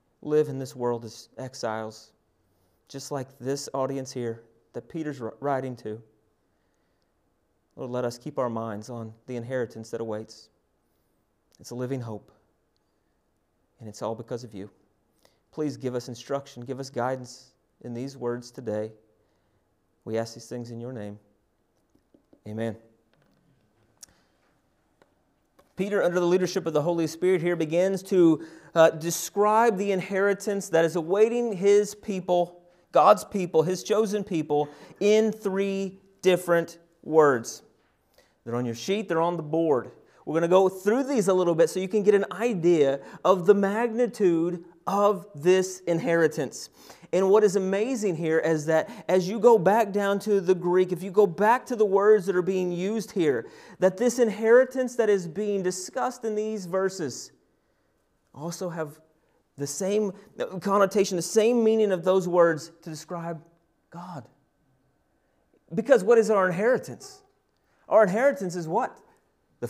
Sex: male